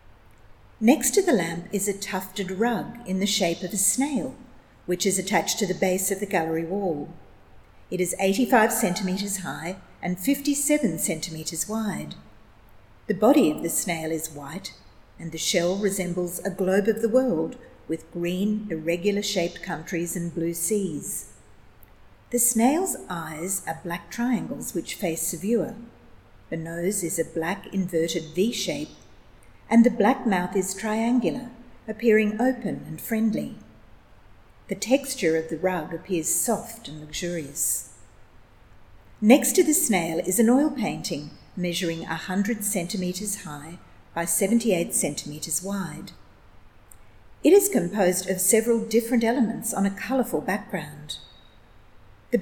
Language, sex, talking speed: English, female, 140 wpm